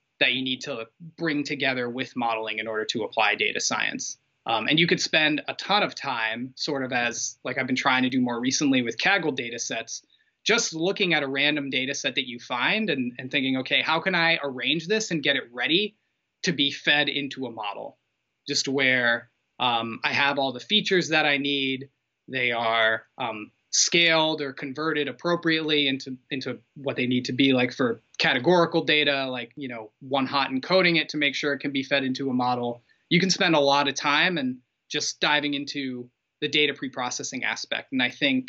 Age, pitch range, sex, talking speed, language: 20-39, 130-165 Hz, male, 205 wpm, English